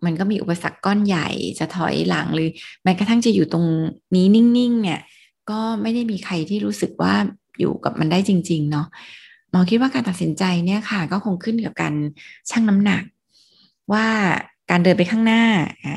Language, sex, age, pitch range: Thai, female, 20-39, 170-215 Hz